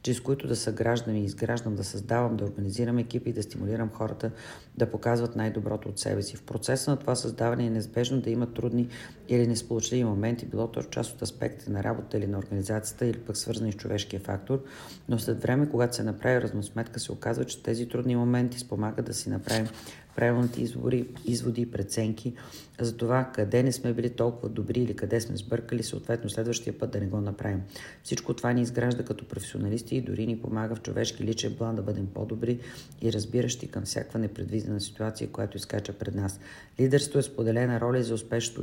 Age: 40-59